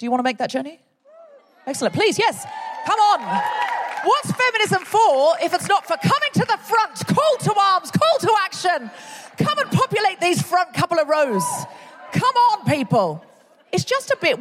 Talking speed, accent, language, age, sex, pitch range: 185 wpm, British, English, 40-59, female, 245-405 Hz